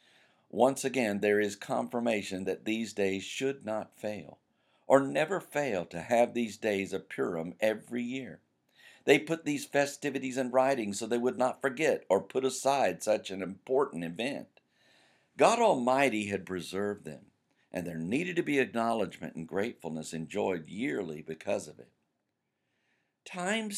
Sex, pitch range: male, 95-135 Hz